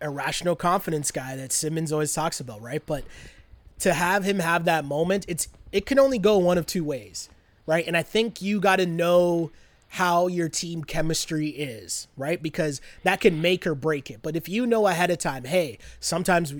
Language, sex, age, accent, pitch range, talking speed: English, male, 20-39, American, 155-185 Hz, 200 wpm